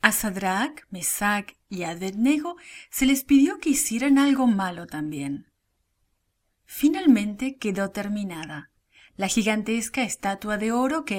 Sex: female